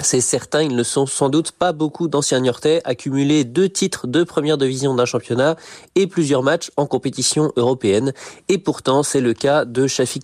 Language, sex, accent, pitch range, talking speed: French, male, French, 120-155 Hz, 190 wpm